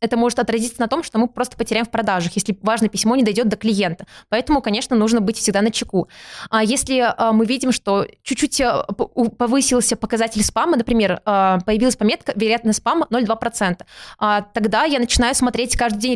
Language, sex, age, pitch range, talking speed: Russian, female, 20-39, 220-270 Hz, 180 wpm